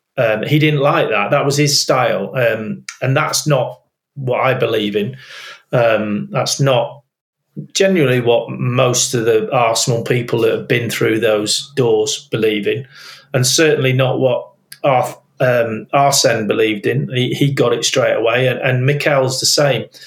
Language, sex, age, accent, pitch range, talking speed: English, male, 30-49, British, 120-140 Hz, 160 wpm